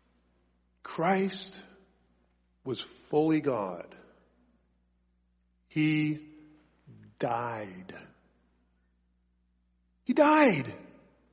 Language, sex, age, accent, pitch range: English, male, 50-69, American, 110-170 Hz